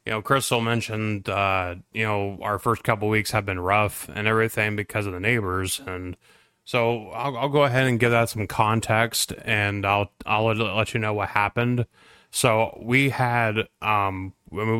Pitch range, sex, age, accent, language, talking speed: 100-110 Hz, male, 20-39, American, English, 175 wpm